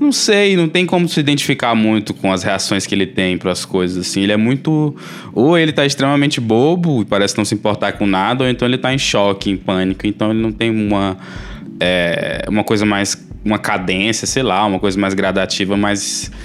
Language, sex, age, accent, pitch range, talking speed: Portuguese, male, 20-39, Brazilian, 95-110 Hz, 215 wpm